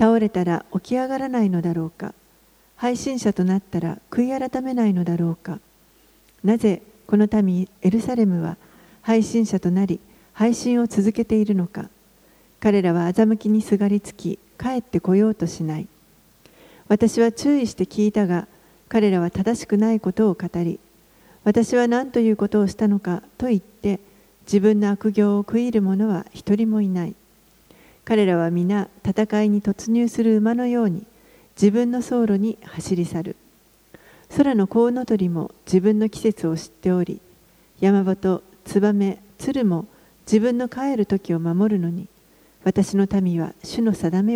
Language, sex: Japanese, female